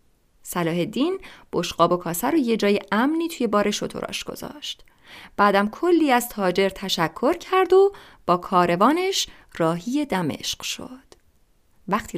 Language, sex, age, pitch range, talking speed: English, female, 30-49, 175-265 Hz, 130 wpm